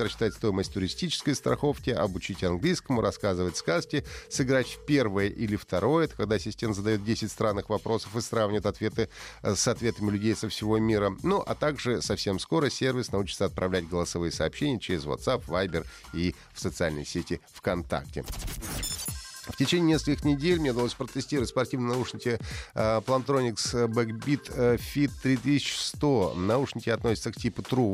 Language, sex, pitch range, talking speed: Russian, male, 100-125 Hz, 135 wpm